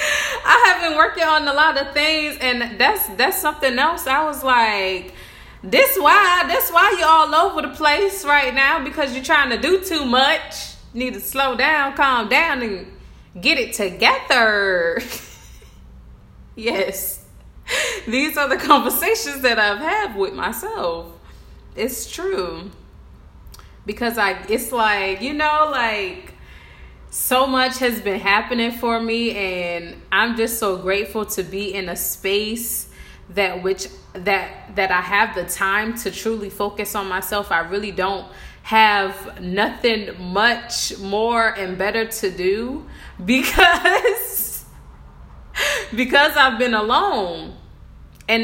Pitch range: 200-295 Hz